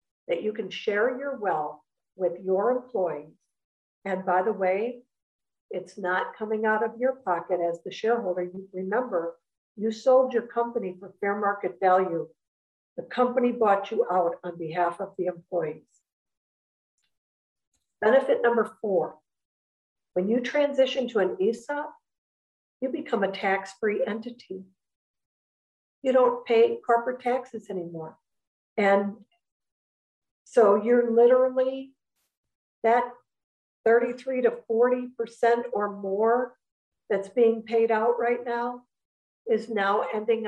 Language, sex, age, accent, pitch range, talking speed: English, female, 50-69, American, 190-240 Hz, 120 wpm